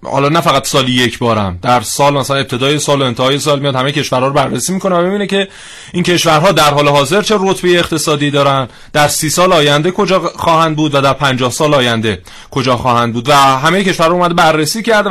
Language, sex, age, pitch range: Persian, male, 30-49, 135-165 Hz